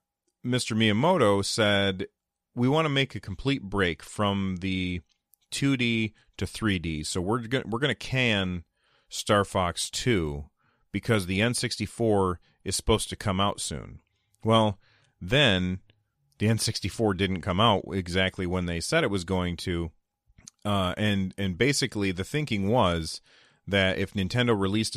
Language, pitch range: English, 90-110 Hz